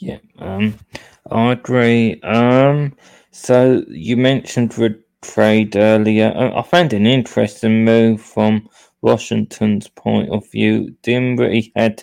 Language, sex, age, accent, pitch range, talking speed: English, male, 20-39, British, 105-115 Hz, 120 wpm